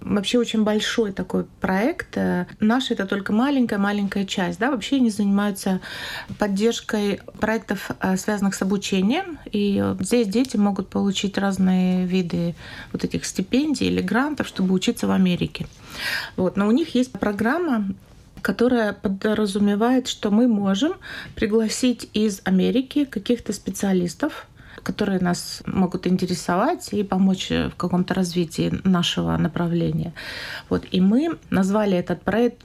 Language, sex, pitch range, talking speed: Russian, female, 185-225 Hz, 120 wpm